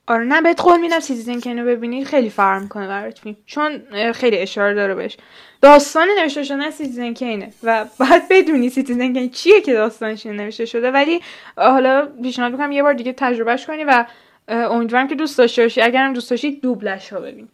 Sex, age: female, 10-29